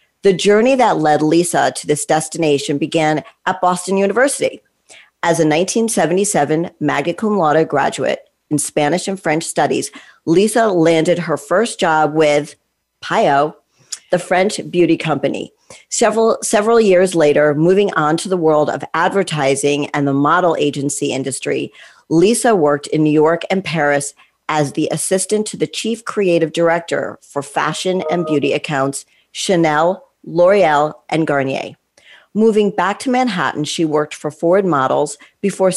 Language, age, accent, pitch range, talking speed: English, 50-69, American, 150-190 Hz, 145 wpm